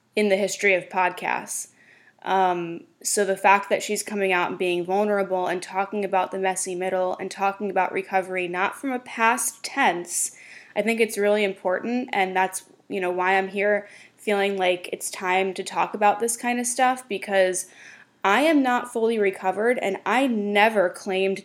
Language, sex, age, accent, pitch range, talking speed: English, female, 10-29, American, 190-220 Hz, 180 wpm